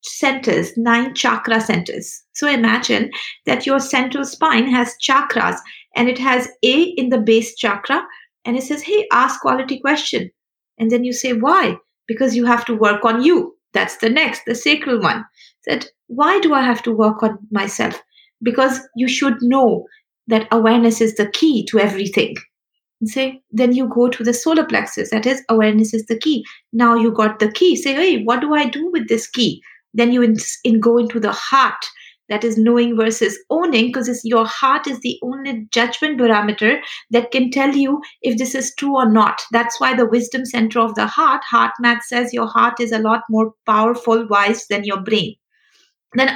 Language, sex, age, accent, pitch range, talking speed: English, female, 50-69, Indian, 230-275 Hz, 190 wpm